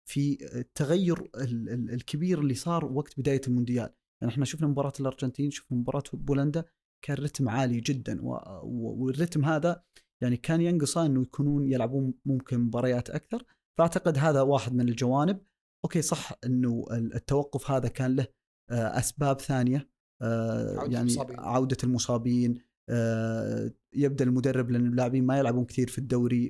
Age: 30-49